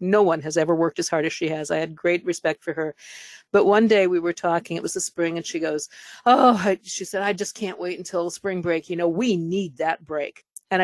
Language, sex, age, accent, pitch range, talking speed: English, female, 50-69, American, 165-205 Hz, 255 wpm